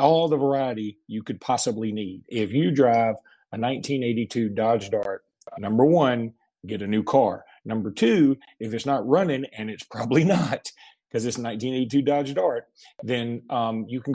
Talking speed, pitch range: 170 wpm, 115-145 Hz